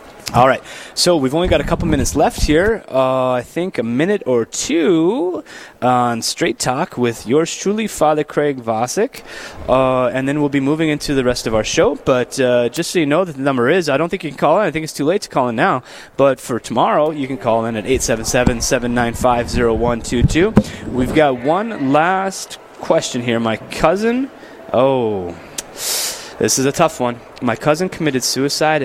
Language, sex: English, male